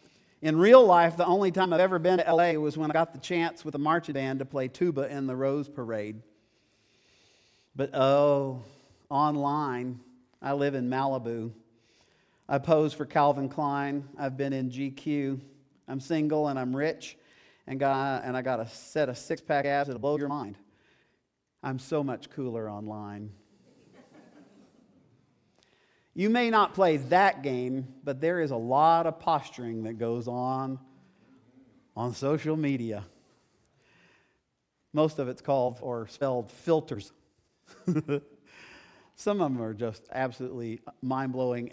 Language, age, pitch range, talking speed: English, 50-69, 125-150 Hz, 145 wpm